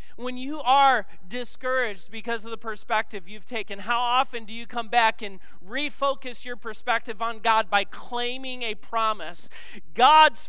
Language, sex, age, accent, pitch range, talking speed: English, male, 40-59, American, 165-230 Hz, 155 wpm